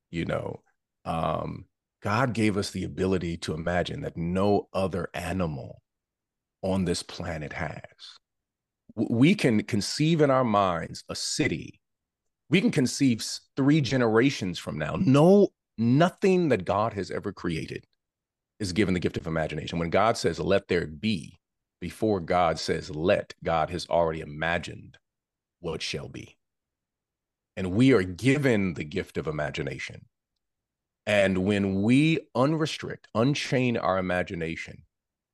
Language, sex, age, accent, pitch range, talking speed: English, male, 40-59, American, 90-125 Hz, 130 wpm